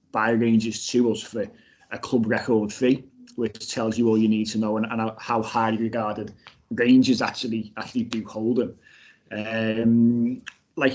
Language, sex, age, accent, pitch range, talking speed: English, male, 20-39, British, 110-125 Hz, 165 wpm